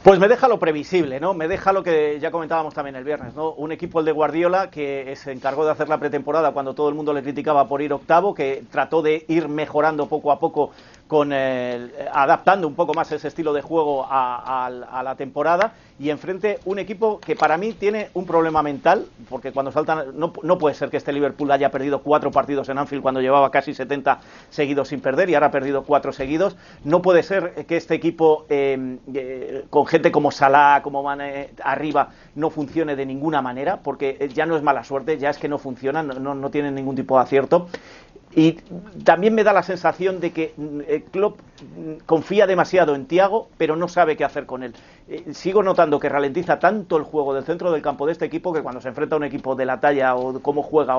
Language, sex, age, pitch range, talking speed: Spanish, male, 40-59, 140-165 Hz, 220 wpm